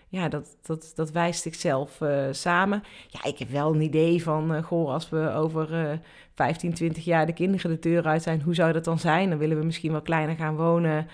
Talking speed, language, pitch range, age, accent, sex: 230 wpm, Dutch, 150-180 Hz, 30-49, Dutch, female